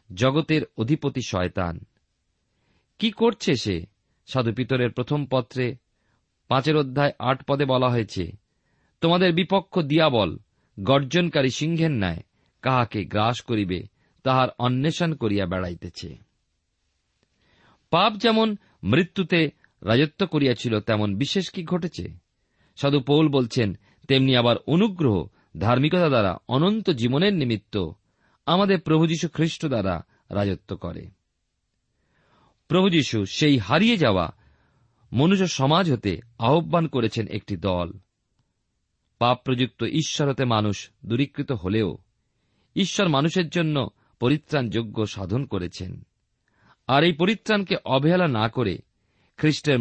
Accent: native